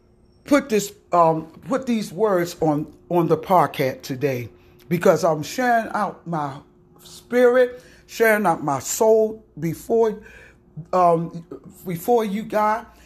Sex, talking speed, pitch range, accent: male, 120 wpm, 180-285 Hz, American